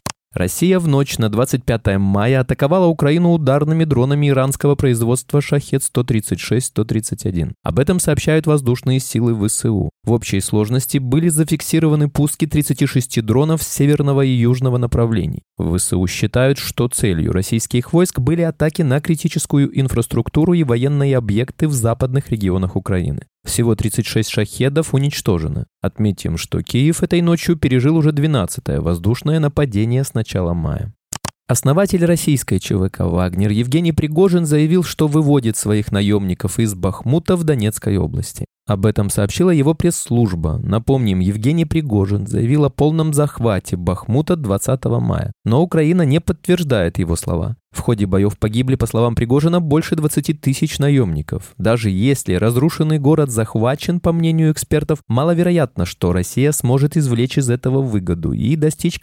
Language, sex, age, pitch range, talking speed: Russian, male, 20-39, 110-155 Hz, 135 wpm